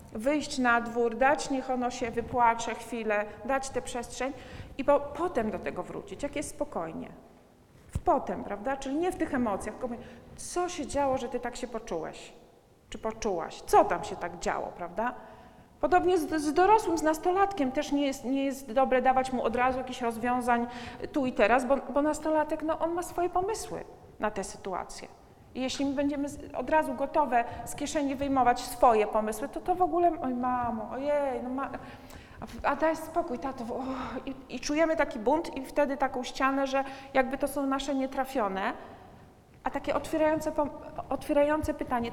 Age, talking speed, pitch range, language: 40-59, 180 wpm, 245-305 Hz, Polish